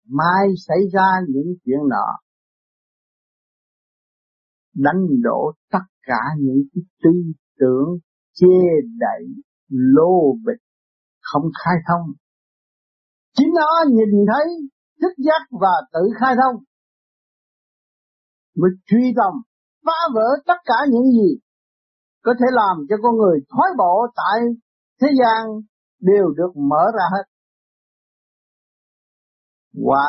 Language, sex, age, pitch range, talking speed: Vietnamese, male, 60-79, 170-250 Hz, 110 wpm